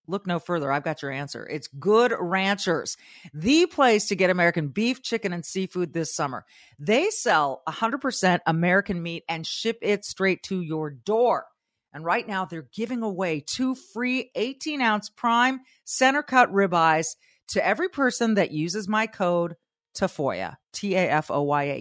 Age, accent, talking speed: 40-59, American, 150 wpm